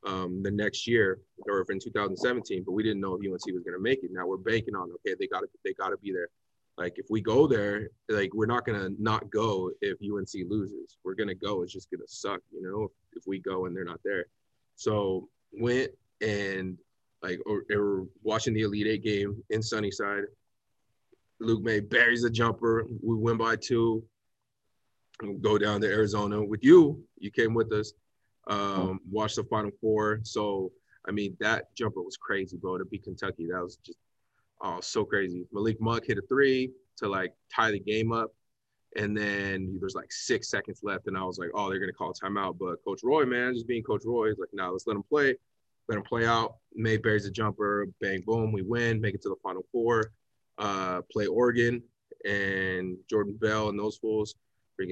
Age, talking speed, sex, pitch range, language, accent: 20-39, 210 wpm, male, 100-115 Hz, English, American